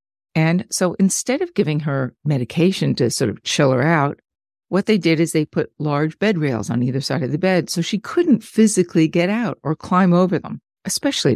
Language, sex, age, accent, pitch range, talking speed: English, female, 50-69, American, 145-210 Hz, 205 wpm